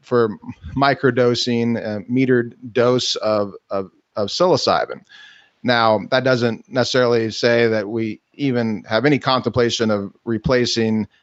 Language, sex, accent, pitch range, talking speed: English, male, American, 115-135 Hz, 120 wpm